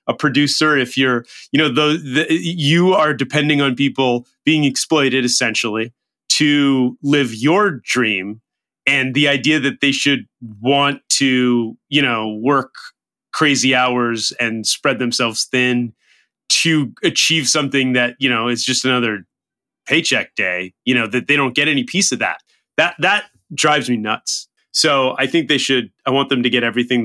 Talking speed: 160 wpm